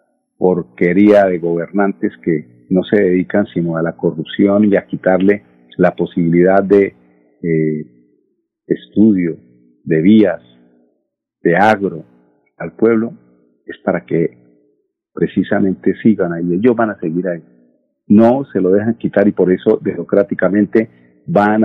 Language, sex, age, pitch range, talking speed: Spanish, male, 50-69, 75-110 Hz, 130 wpm